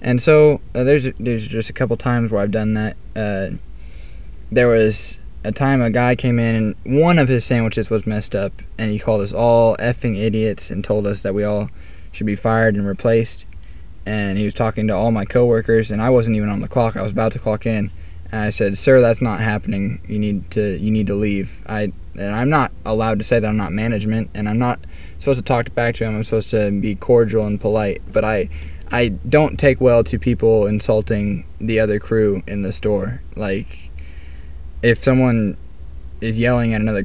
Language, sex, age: English, male, 10-29